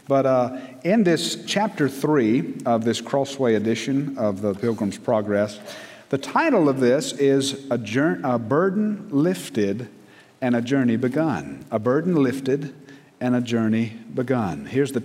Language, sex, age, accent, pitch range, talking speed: English, male, 50-69, American, 115-140 Hz, 145 wpm